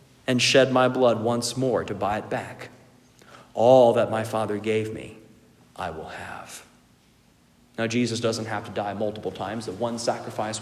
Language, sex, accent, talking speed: English, male, American, 170 wpm